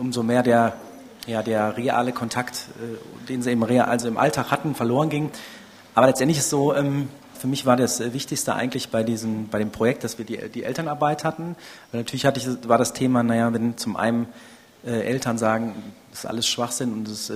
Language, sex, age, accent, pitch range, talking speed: German, male, 30-49, German, 120-140 Hz, 200 wpm